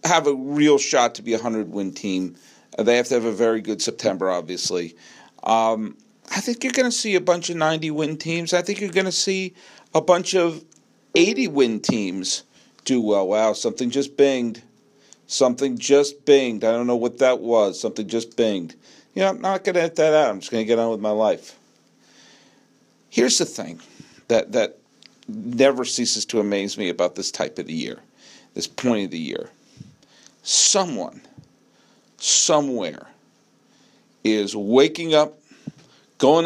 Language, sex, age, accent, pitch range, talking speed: English, male, 50-69, American, 115-165 Hz, 170 wpm